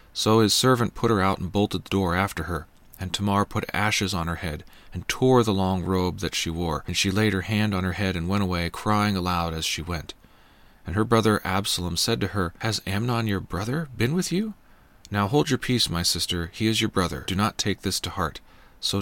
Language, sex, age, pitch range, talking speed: English, male, 40-59, 85-105 Hz, 235 wpm